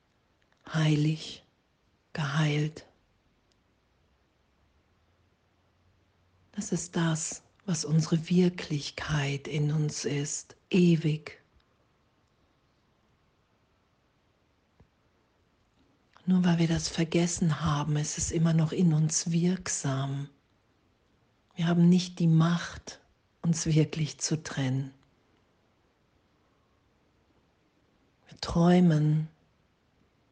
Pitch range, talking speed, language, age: 150-175 Hz, 70 wpm, German, 50-69